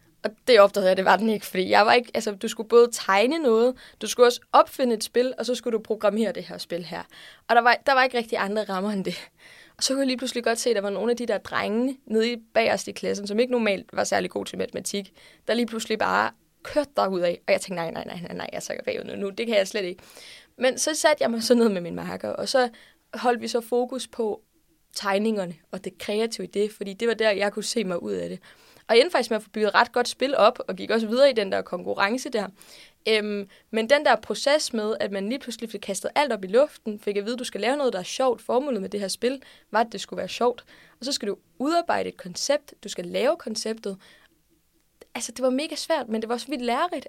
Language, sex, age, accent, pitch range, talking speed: Danish, female, 20-39, native, 205-250 Hz, 270 wpm